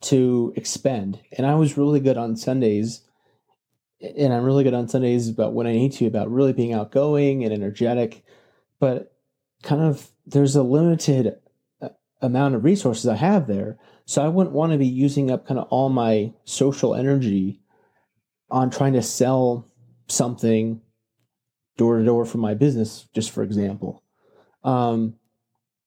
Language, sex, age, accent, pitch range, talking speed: English, male, 30-49, American, 115-140 Hz, 150 wpm